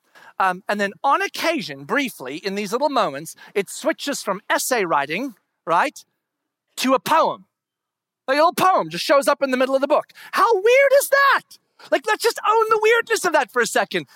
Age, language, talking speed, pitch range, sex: 40-59, English, 195 wpm, 195-305 Hz, male